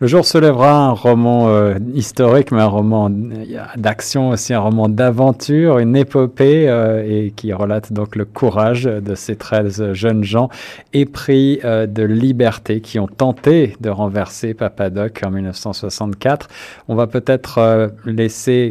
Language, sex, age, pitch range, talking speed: French, male, 50-69, 105-125 Hz, 150 wpm